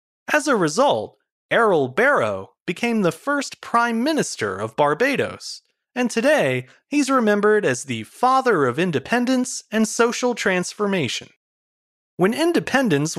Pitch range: 160-235 Hz